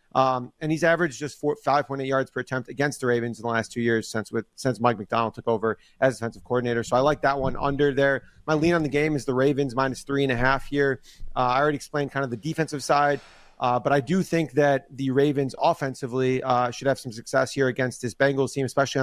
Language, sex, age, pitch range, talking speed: English, male, 30-49, 125-150 Hz, 245 wpm